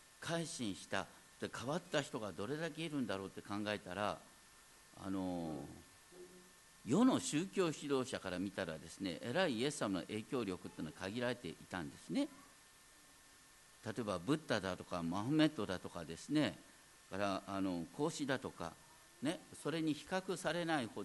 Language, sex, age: Japanese, male, 50-69